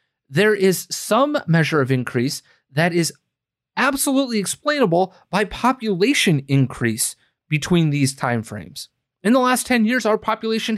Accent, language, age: American, English, 30-49